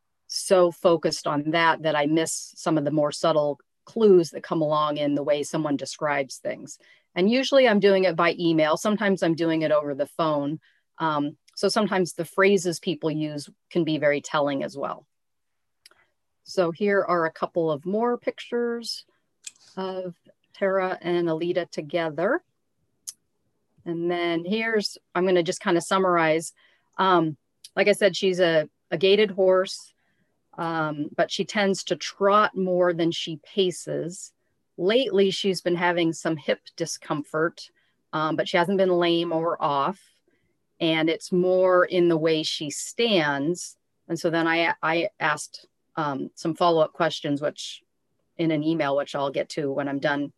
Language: English